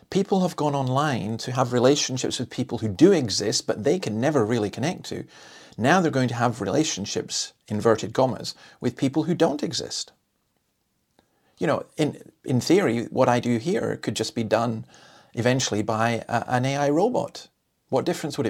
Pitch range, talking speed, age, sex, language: 110-140 Hz, 175 wpm, 40-59, male, English